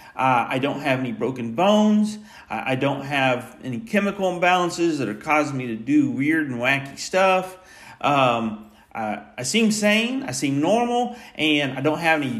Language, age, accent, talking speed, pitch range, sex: English, 40-59, American, 180 wpm, 130-190 Hz, male